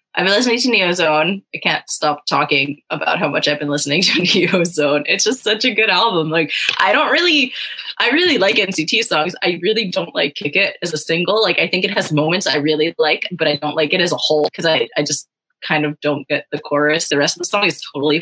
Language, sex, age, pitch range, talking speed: English, female, 20-39, 150-195 Hz, 245 wpm